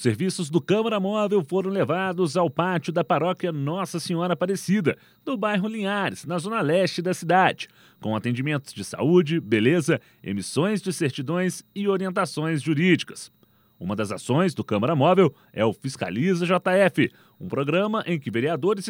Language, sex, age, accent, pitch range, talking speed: Portuguese, male, 30-49, Brazilian, 140-190 Hz, 150 wpm